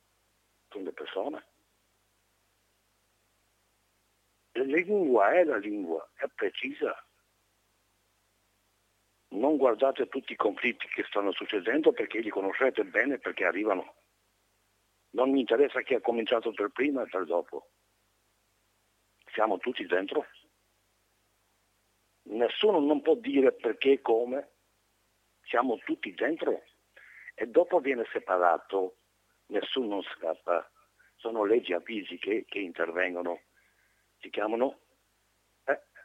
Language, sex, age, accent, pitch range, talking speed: Italian, male, 60-79, native, 100-130 Hz, 100 wpm